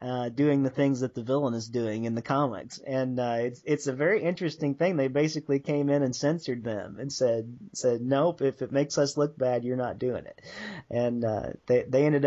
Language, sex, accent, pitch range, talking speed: English, male, American, 115-135 Hz, 225 wpm